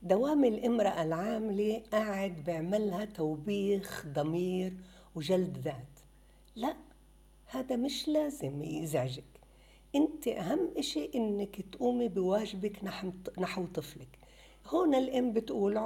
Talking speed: 95 wpm